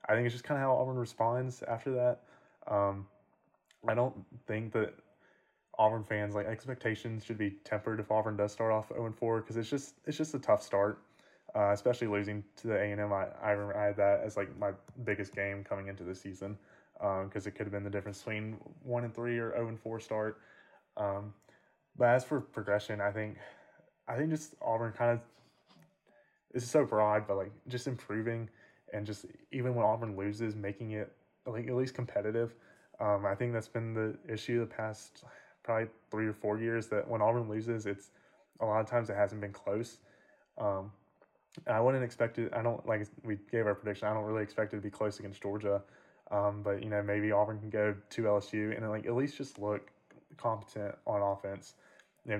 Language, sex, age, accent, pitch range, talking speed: English, male, 20-39, American, 105-115 Hz, 205 wpm